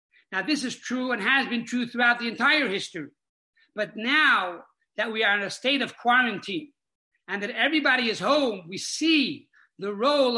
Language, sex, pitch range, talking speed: English, male, 215-280 Hz, 180 wpm